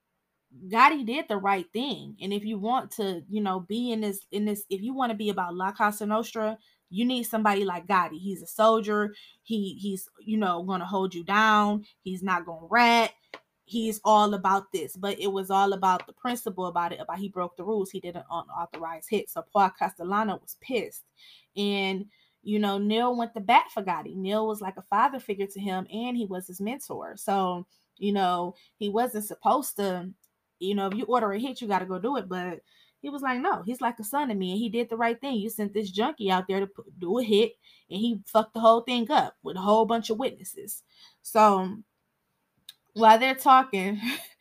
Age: 20-39